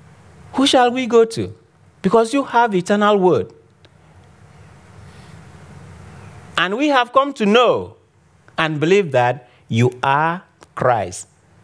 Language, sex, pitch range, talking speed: English, male, 115-185 Hz, 115 wpm